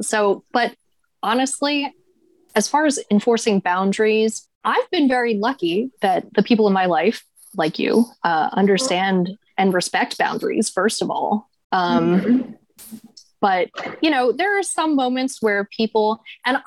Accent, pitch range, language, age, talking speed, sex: American, 190-255 Hz, English, 20-39, 140 wpm, female